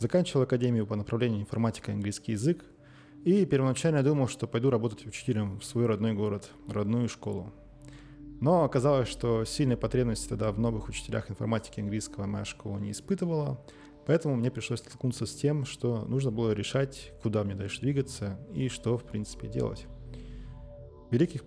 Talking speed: 155 wpm